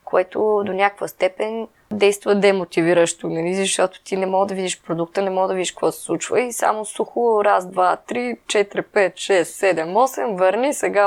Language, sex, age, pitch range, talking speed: Bulgarian, female, 20-39, 160-195 Hz, 185 wpm